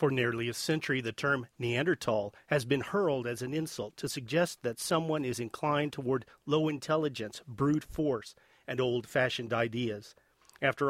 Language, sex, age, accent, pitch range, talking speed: English, male, 40-59, American, 120-150 Hz, 155 wpm